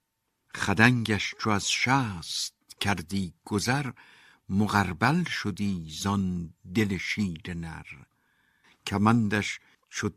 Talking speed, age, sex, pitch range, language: 85 wpm, 60-79, male, 90-115 Hz, Persian